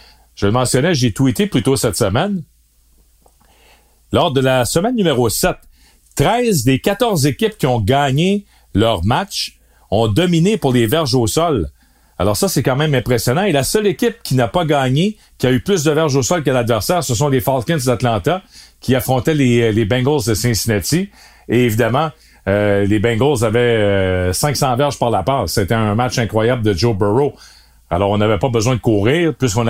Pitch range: 115-145 Hz